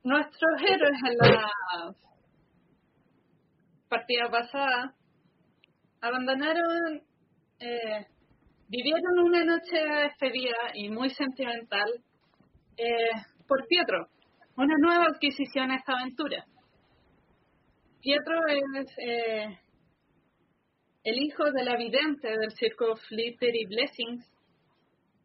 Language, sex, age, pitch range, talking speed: Spanish, female, 30-49, 235-310 Hz, 85 wpm